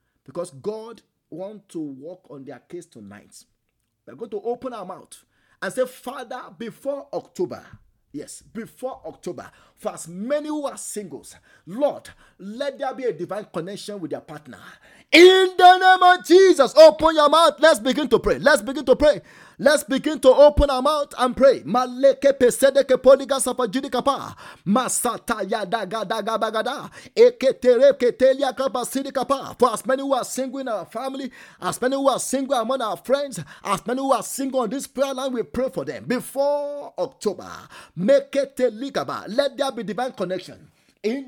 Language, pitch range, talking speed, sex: English, 235-280 Hz, 145 wpm, male